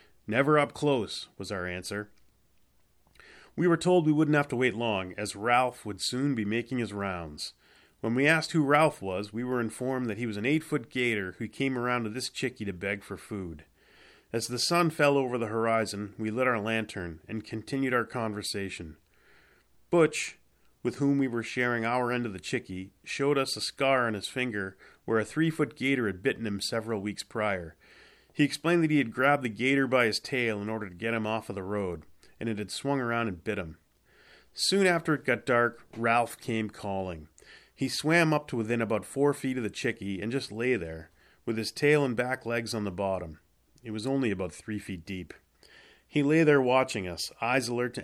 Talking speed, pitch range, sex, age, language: 205 wpm, 100-130 Hz, male, 30-49, English